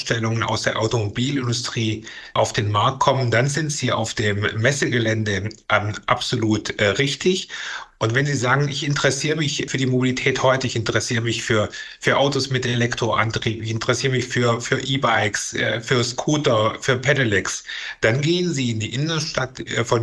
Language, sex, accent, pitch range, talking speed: German, male, German, 115-135 Hz, 160 wpm